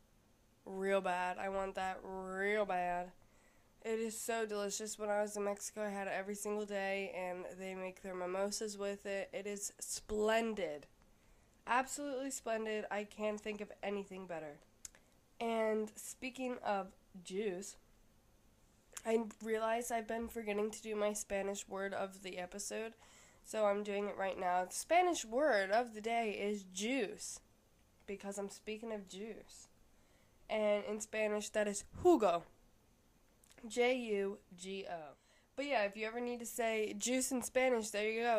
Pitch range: 190-225 Hz